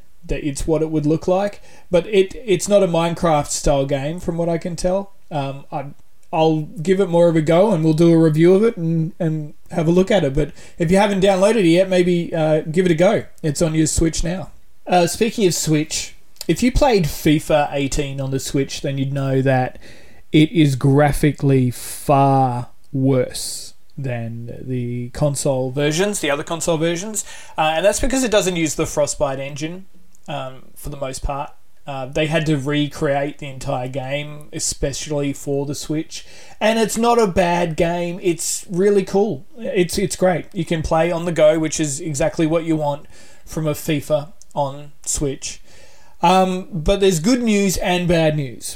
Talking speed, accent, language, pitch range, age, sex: 190 wpm, Australian, English, 145-180 Hz, 20-39, male